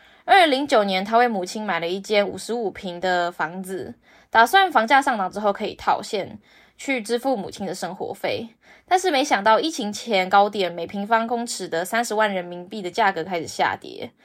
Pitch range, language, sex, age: 195-270 Hz, Chinese, female, 20-39